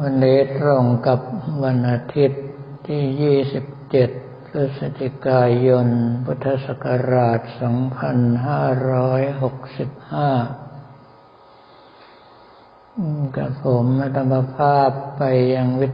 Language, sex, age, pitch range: Thai, male, 60-79, 120-135 Hz